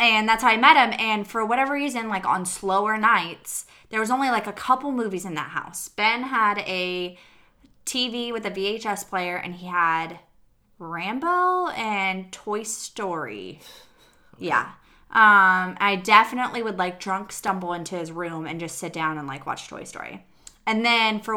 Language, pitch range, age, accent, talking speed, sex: English, 175-220 Hz, 20-39, American, 175 wpm, female